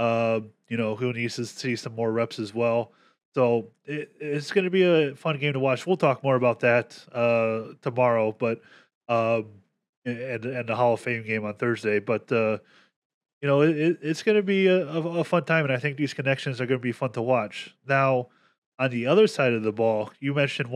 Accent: American